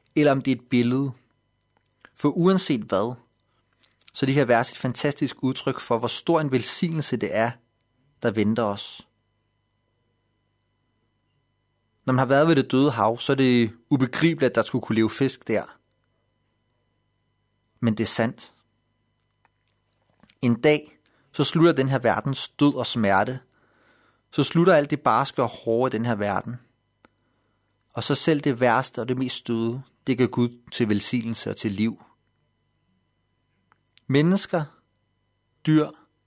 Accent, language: native, Danish